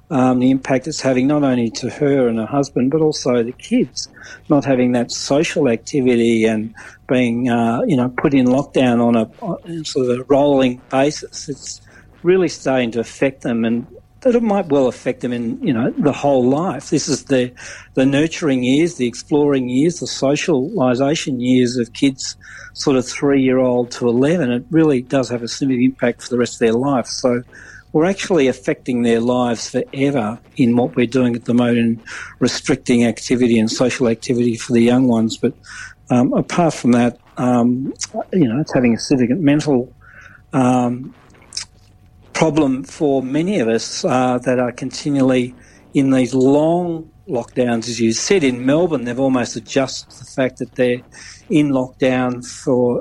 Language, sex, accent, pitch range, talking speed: English, male, Australian, 120-140 Hz, 180 wpm